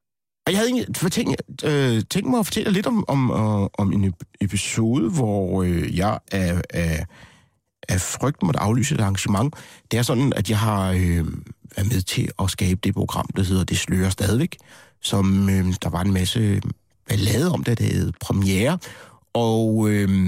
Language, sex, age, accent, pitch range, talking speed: Danish, male, 60-79, native, 95-150 Hz, 145 wpm